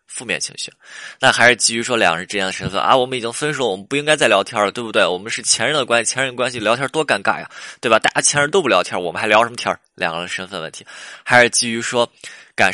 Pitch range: 100-150 Hz